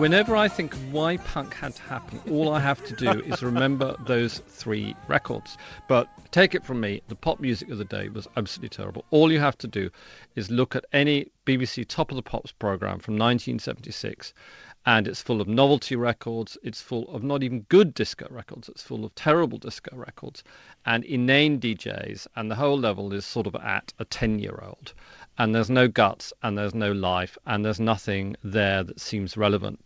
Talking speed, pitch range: 195 wpm, 105-145 Hz